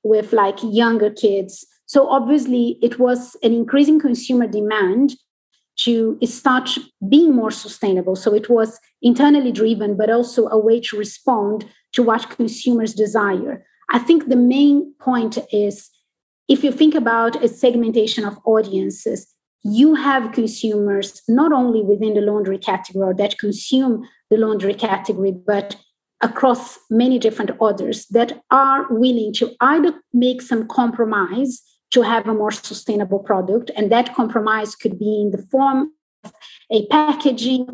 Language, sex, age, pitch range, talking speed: English, female, 30-49, 215-260 Hz, 145 wpm